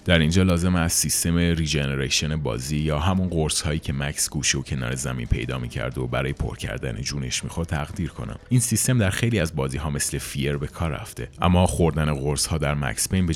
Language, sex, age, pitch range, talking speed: Persian, male, 30-49, 75-95 Hz, 205 wpm